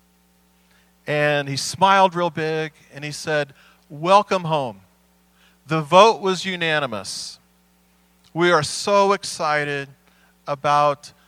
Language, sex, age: English, male, 40-59